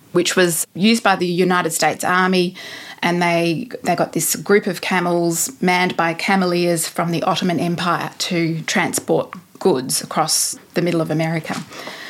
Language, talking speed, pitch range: English, 155 wpm, 170-195 Hz